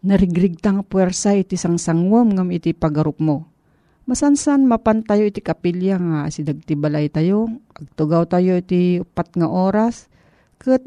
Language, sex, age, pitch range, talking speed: Filipino, female, 40-59, 165-215 Hz, 135 wpm